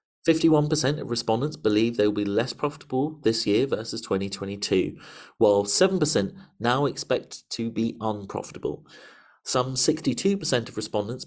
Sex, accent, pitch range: male, British, 100-150 Hz